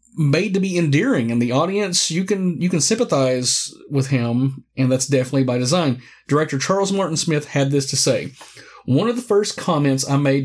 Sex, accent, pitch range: male, American, 125-155 Hz